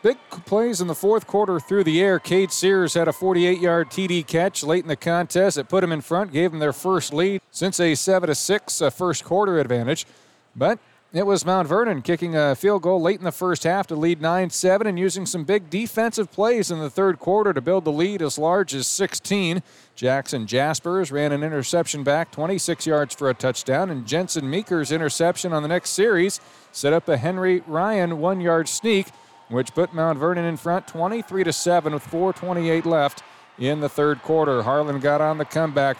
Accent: American